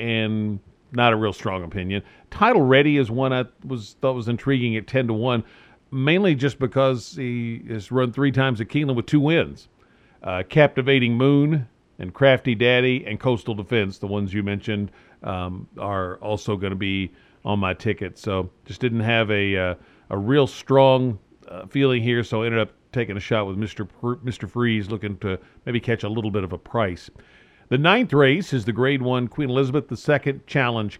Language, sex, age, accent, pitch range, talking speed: English, male, 50-69, American, 105-130 Hz, 190 wpm